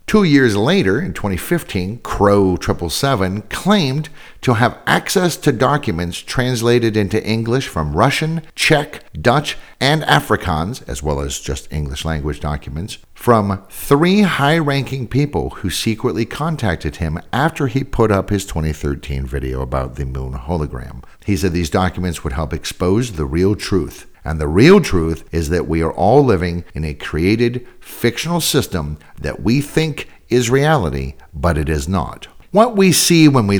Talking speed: 155 wpm